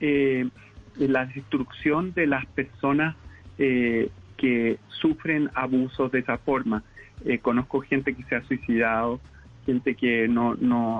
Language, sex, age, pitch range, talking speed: Spanish, male, 40-59, 125-160 Hz, 135 wpm